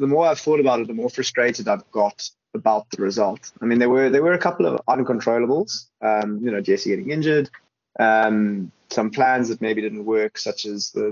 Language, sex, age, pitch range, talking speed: English, male, 20-39, 110-135 Hz, 215 wpm